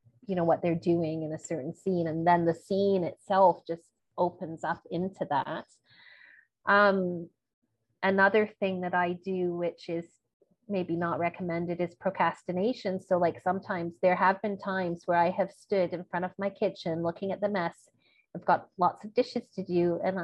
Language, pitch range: English, 165-195 Hz